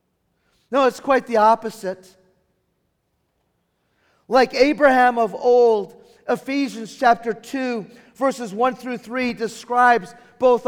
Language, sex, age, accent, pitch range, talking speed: English, male, 40-59, American, 210-250 Hz, 100 wpm